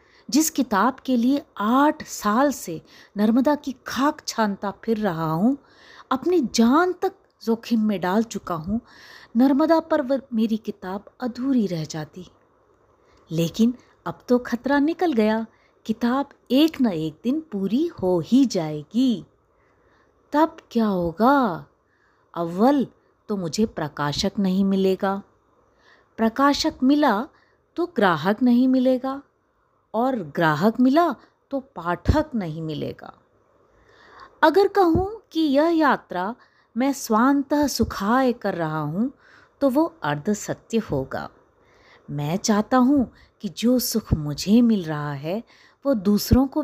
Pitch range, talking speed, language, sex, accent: 200-290 Hz, 120 wpm, Hindi, female, native